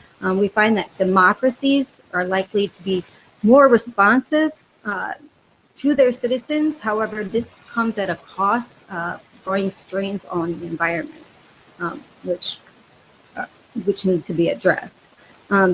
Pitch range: 190-235 Hz